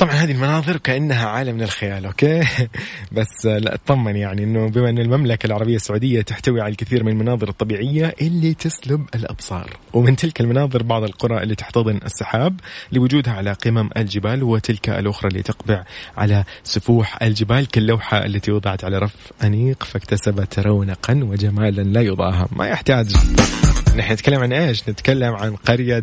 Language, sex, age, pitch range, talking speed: Arabic, male, 20-39, 105-130 Hz, 150 wpm